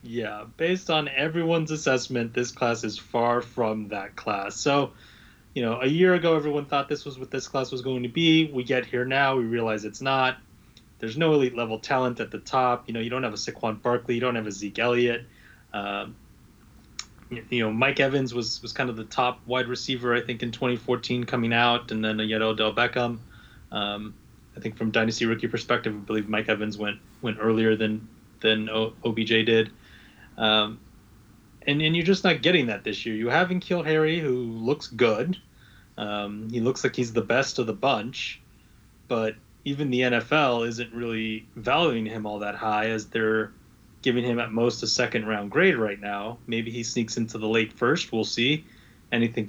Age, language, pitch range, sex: 20-39, English, 110-130 Hz, male